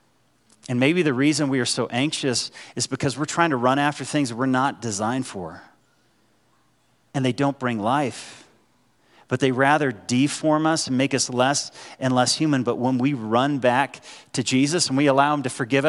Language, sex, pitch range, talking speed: English, male, 135-170 Hz, 190 wpm